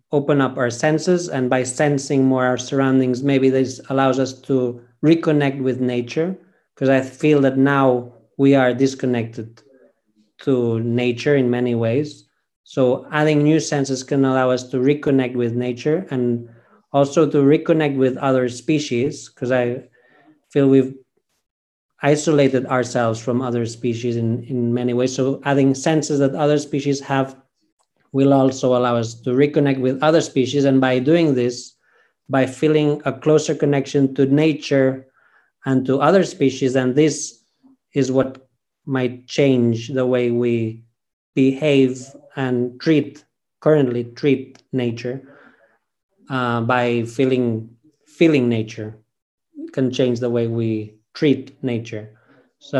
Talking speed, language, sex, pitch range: 140 wpm, English, male, 125-145 Hz